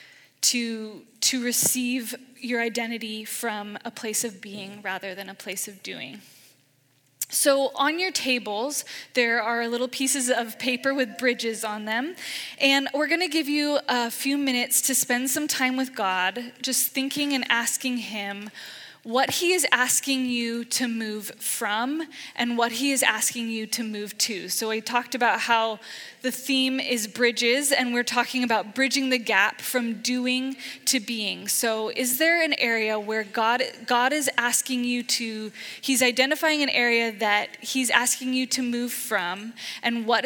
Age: 10-29